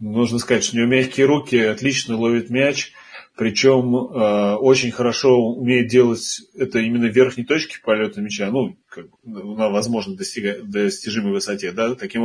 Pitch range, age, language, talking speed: 105-130 Hz, 30-49, Russian, 150 wpm